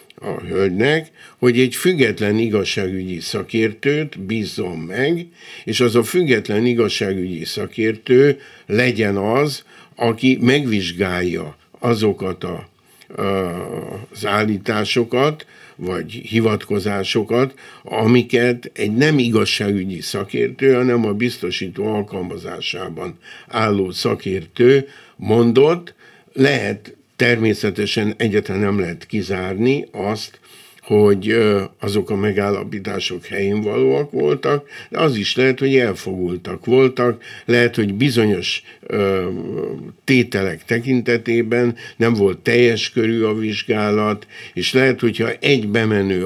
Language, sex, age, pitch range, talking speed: Hungarian, male, 60-79, 100-125 Hz, 100 wpm